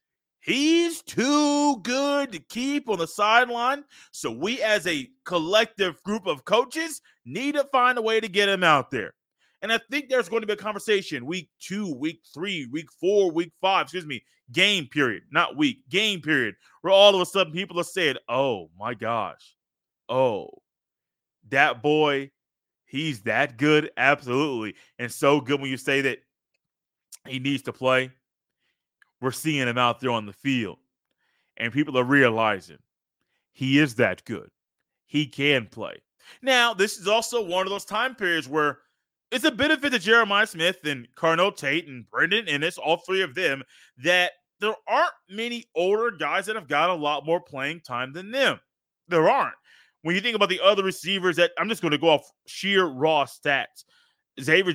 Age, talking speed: 30-49, 175 wpm